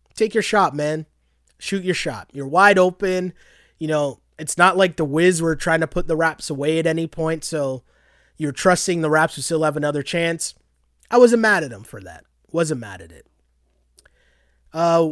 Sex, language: male, English